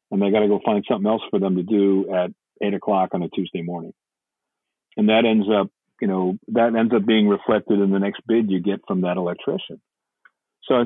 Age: 50-69